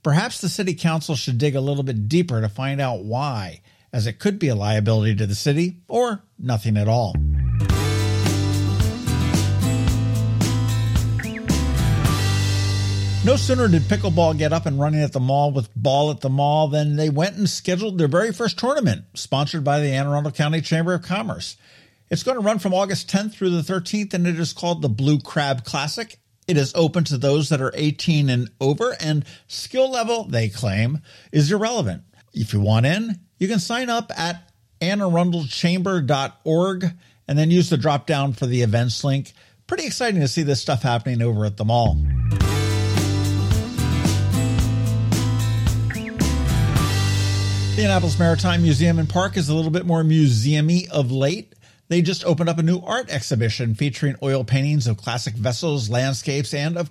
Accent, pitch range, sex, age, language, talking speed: American, 110-165 Hz, male, 50-69, English, 170 wpm